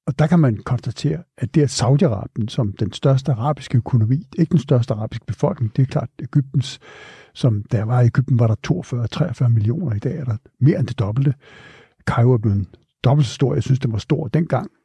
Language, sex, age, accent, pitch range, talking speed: Danish, male, 60-79, native, 120-150 Hz, 205 wpm